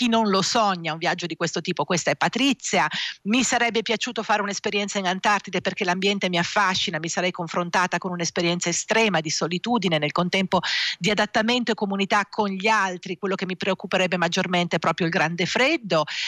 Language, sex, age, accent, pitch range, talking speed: Italian, female, 50-69, native, 180-225 Hz, 185 wpm